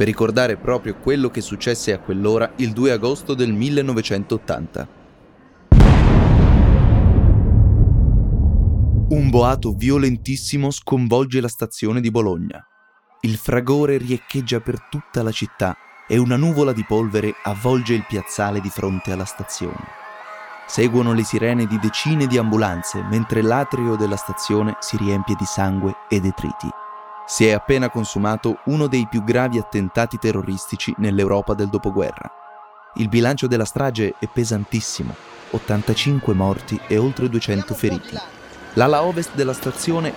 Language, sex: Italian, male